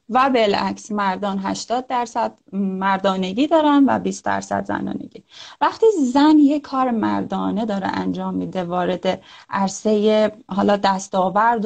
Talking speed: 110 wpm